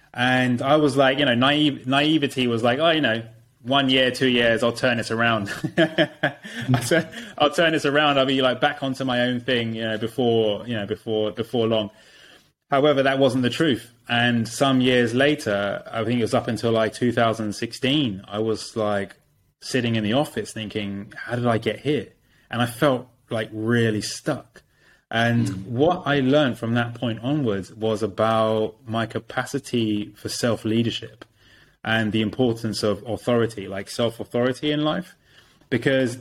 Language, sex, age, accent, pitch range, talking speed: English, male, 20-39, British, 110-135 Hz, 170 wpm